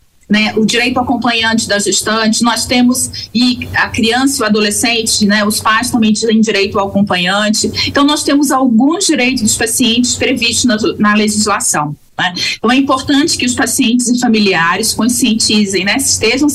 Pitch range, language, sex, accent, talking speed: 210-260 Hz, Portuguese, female, Brazilian, 165 wpm